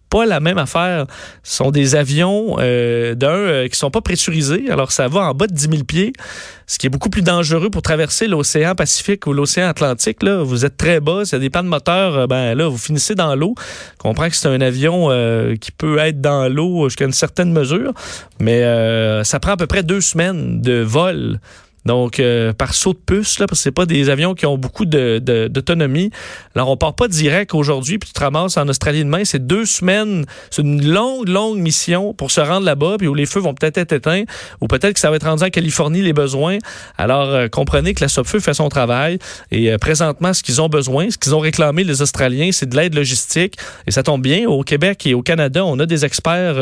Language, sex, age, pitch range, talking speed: French, male, 40-59, 135-180 Hz, 240 wpm